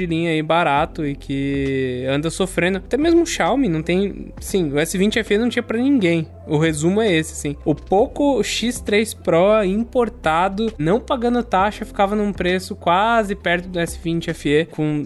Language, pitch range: Portuguese, 145-190 Hz